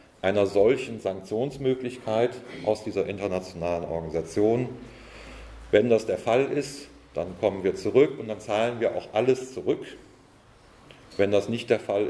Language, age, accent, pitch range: German, 40-59, German, 100-135 Hz